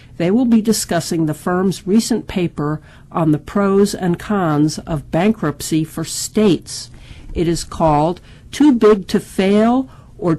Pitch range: 150-205 Hz